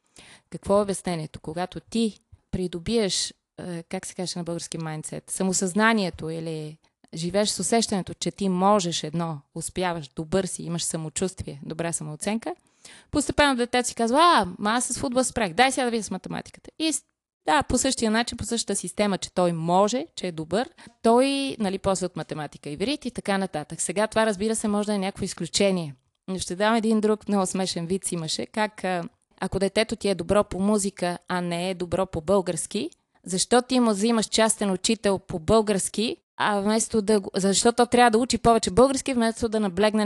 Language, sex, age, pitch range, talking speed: Bulgarian, female, 20-39, 175-220 Hz, 175 wpm